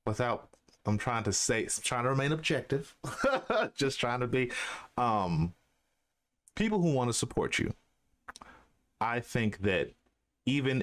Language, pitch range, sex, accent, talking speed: English, 90-120 Hz, male, American, 135 wpm